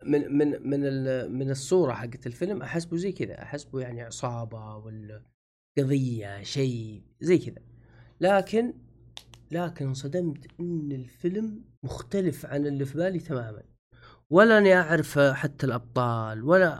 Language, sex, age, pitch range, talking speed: Arabic, male, 30-49, 120-160 Hz, 120 wpm